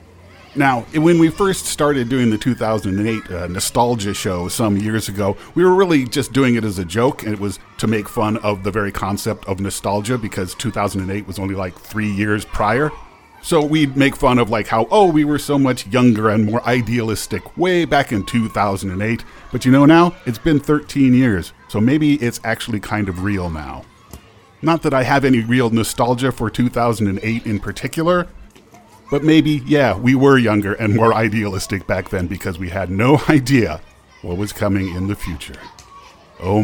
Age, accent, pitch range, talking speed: 40-59, American, 100-135 Hz, 185 wpm